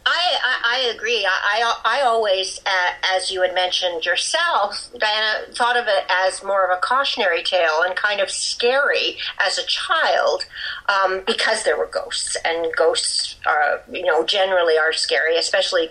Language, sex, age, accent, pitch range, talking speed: English, female, 50-69, American, 180-285 Hz, 170 wpm